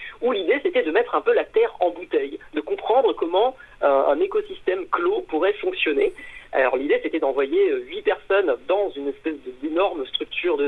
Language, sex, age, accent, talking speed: French, male, 40-59, French, 185 wpm